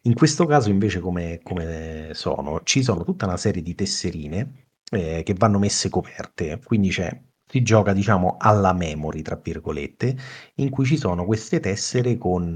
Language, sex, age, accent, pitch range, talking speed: Italian, male, 30-49, native, 90-125 Hz, 165 wpm